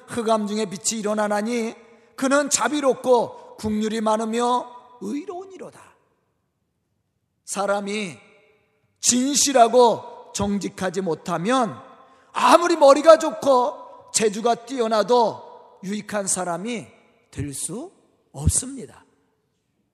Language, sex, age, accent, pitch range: Korean, male, 40-59, native, 220-310 Hz